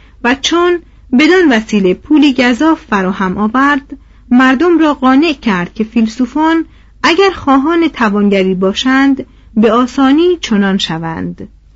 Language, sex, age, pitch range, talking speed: Persian, female, 40-59, 205-275 Hz, 110 wpm